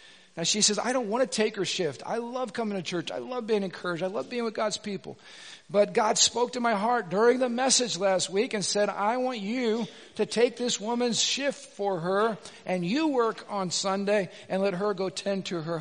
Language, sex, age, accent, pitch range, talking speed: English, male, 50-69, American, 195-245 Hz, 230 wpm